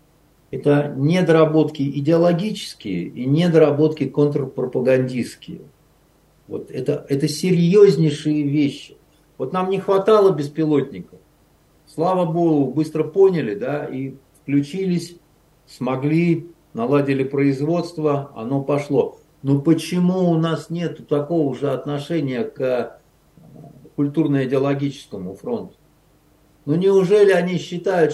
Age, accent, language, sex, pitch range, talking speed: 50-69, native, Russian, male, 140-180 Hz, 90 wpm